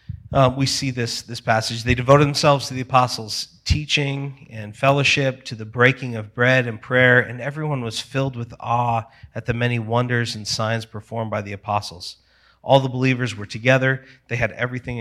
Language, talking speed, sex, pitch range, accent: English, 185 wpm, male, 115-145 Hz, American